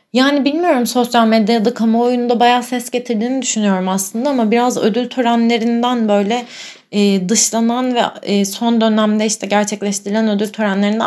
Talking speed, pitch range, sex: 135 wpm, 185-230 Hz, female